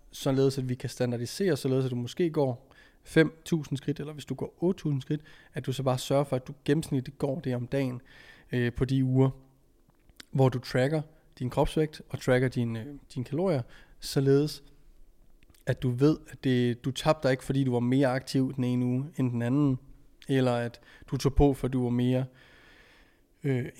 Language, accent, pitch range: Danish, native, 125-155 Hz